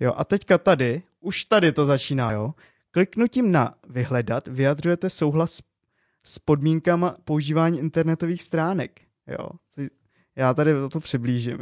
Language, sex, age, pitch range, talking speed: Czech, male, 20-39, 130-180 Hz, 125 wpm